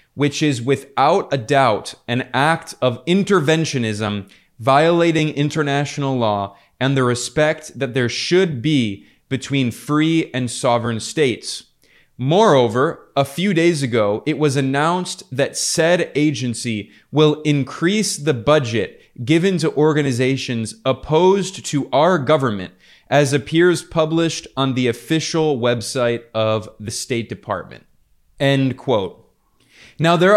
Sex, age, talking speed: male, 20-39, 120 wpm